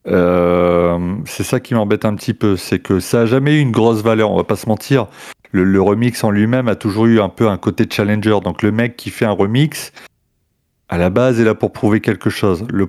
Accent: French